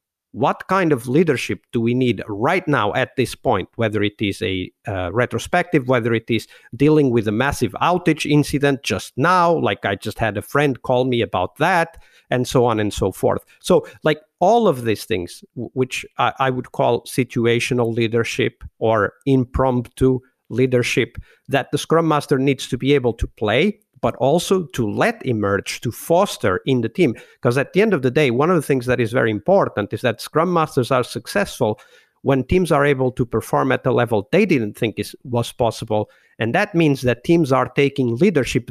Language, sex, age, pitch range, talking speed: English, male, 50-69, 120-150 Hz, 195 wpm